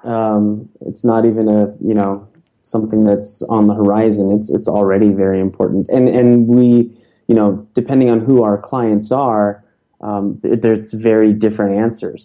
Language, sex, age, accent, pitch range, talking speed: English, male, 20-39, American, 105-125 Hz, 165 wpm